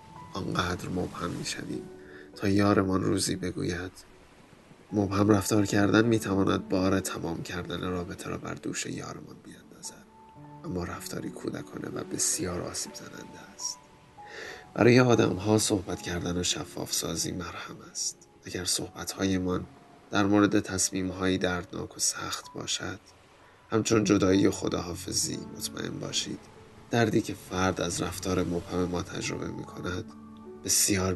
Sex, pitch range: male, 90-100 Hz